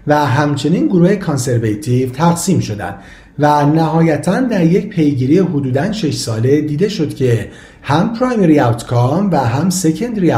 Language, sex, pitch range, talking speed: Persian, male, 125-180 Hz, 135 wpm